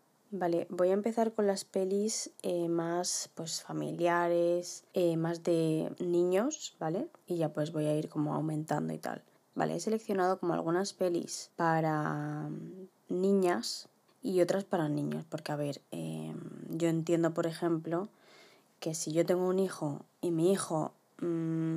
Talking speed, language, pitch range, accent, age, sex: 155 wpm, Spanish, 160-190 Hz, Spanish, 20-39, female